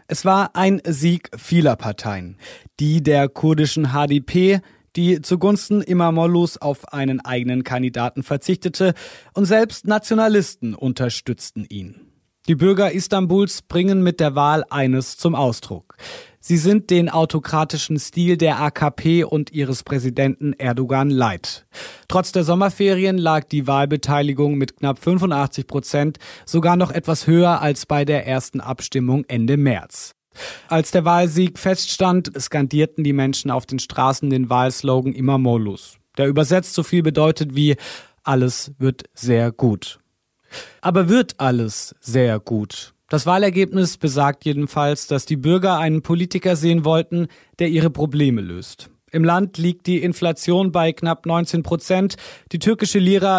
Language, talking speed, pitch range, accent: German, 135 wpm, 135-175 Hz, German